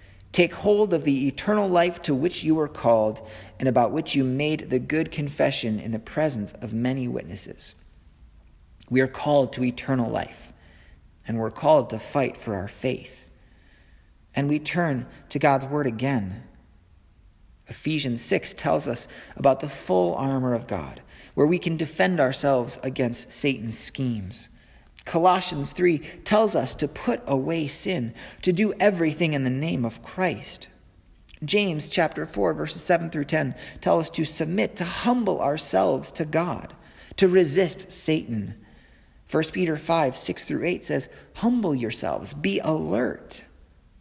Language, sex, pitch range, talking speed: English, male, 105-155 Hz, 150 wpm